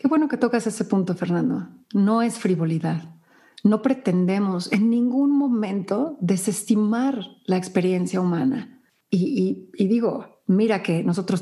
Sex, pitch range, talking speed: female, 180-240 Hz, 135 wpm